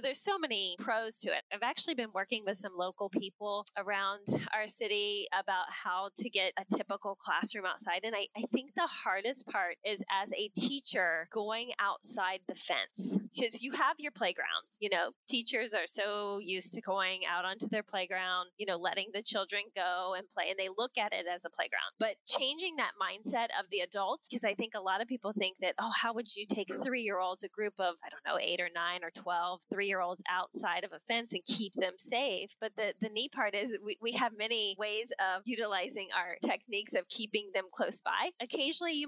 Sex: female